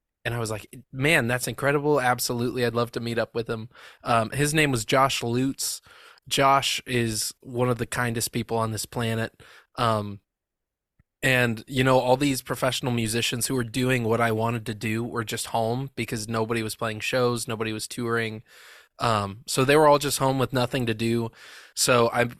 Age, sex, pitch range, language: 20-39, male, 115-130 Hz, English